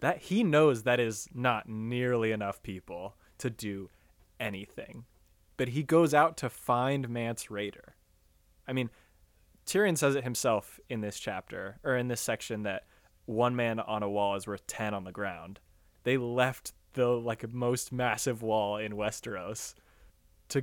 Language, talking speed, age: English, 160 wpm, 20-39